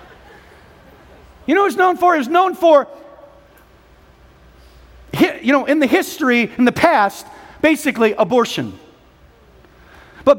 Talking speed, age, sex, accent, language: 115 wpm, 40-59, male, American, English